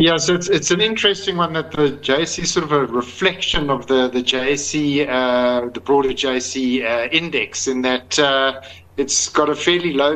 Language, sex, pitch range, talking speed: English, male, 130-150 Hz, 200 wpm